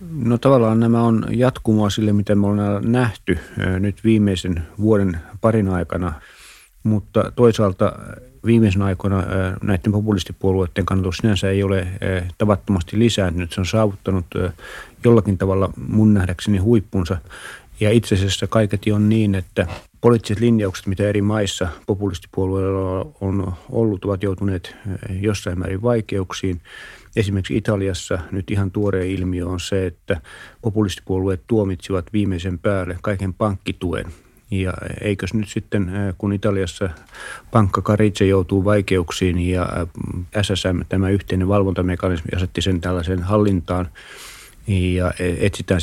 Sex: male